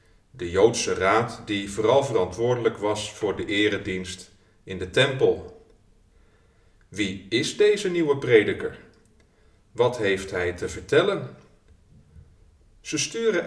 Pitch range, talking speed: 95-155 Hz, 110 wpm